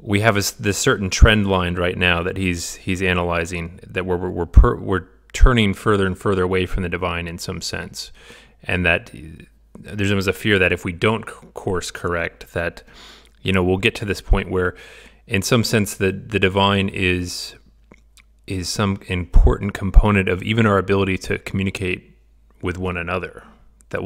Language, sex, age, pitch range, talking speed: English, male, 30-49, 90-100 Hz, 175 wpm